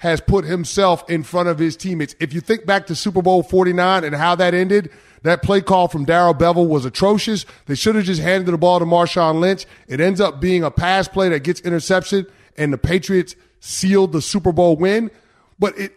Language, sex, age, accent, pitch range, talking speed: English, male, 30-49, American, 150-185 Hz, 220 wpm